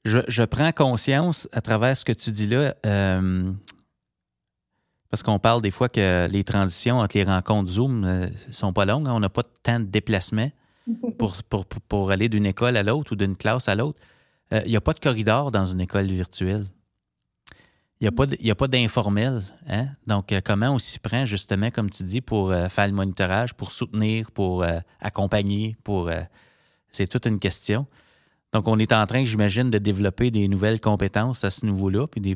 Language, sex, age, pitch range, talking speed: French, male, 30-49, 100-120 Hz, 205 wpm